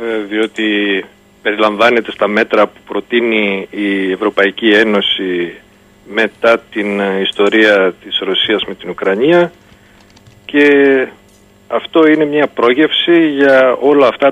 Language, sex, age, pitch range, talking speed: Greek, male, 40-59, 105-135 Hz, 105 wpm